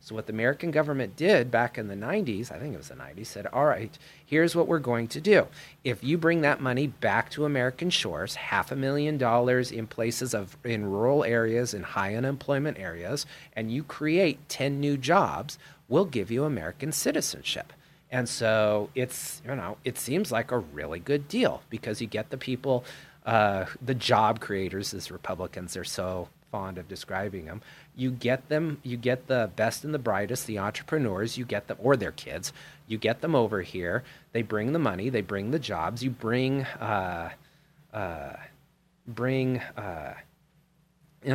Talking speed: 185 wpm